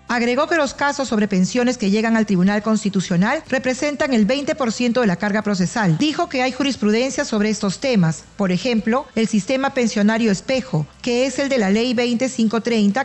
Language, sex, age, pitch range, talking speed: Spanish, female, 40-59, 205-255 Hz, 175 wpm